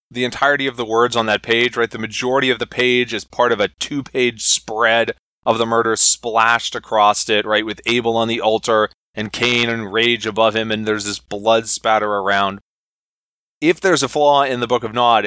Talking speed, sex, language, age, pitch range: 210 wpm, male, English, 20-39, 105-120 Hz